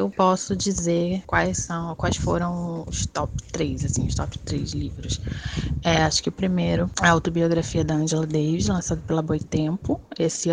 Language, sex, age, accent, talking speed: Portuguese, female, 20-39, Brazilian, 170 wpm